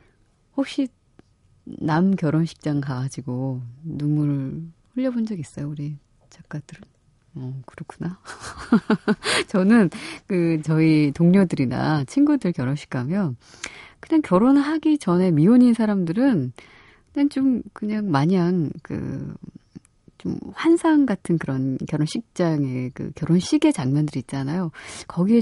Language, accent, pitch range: Korean, native, 140-200 Hz